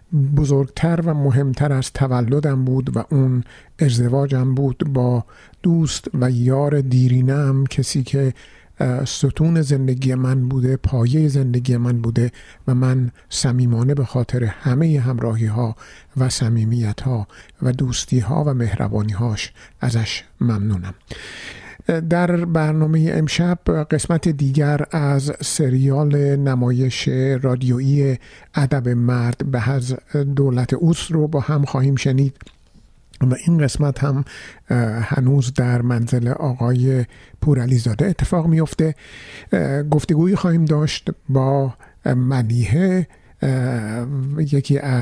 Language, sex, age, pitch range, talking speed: Persian, male, 50-69, 125-150 Hz, 110 wpm